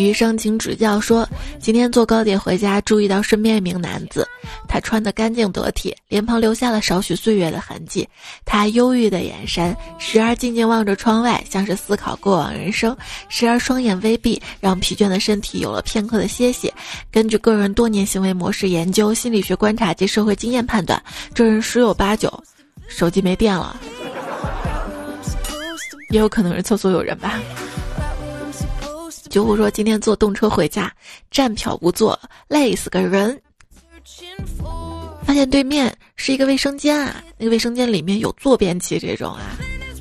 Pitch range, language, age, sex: 190-235 Hz, Chinese, 20-39, female